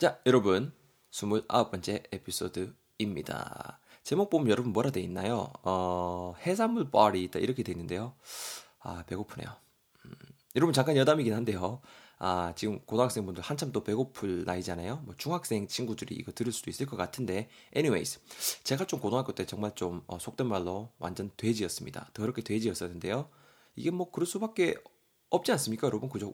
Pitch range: 95-130 Hz